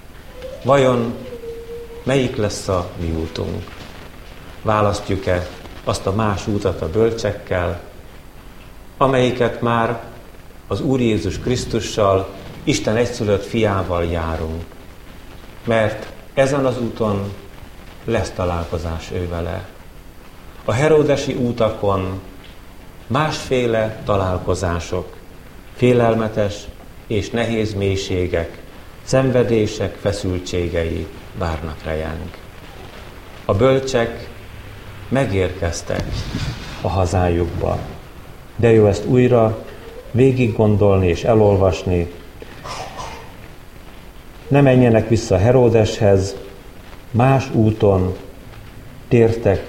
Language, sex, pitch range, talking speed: Hungarian, male, 90-115 Hz, 75 wpm